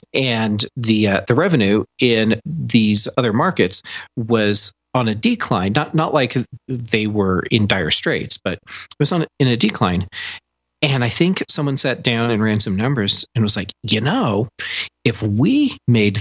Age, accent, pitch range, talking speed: 40-59, American, 100-125 Hz, 170 wpm